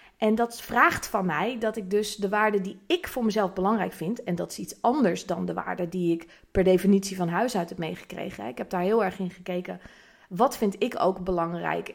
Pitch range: 190-265 Hz